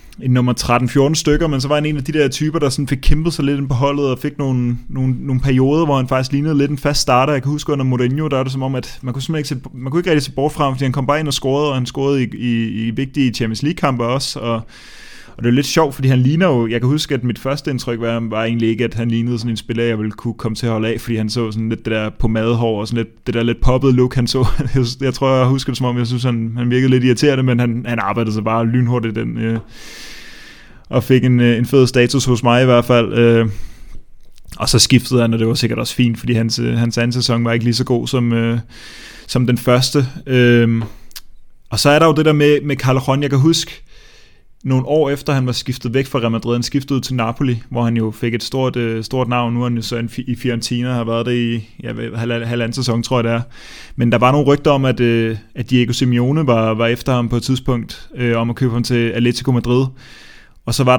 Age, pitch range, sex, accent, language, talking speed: 20-39, 115-135 Hz, male, native, Danish, 265 wpm